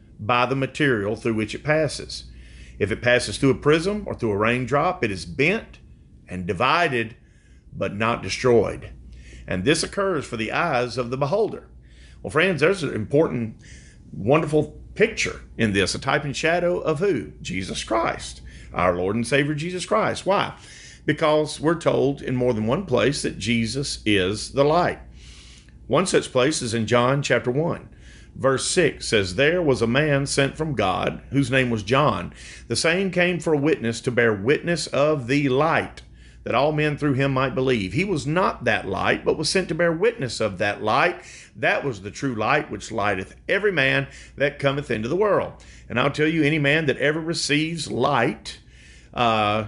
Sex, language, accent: male, English, American